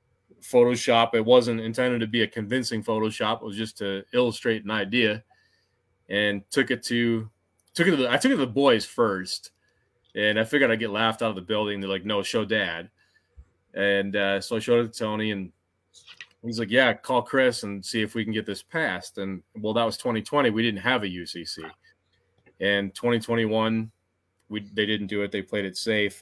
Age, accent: 20-39, American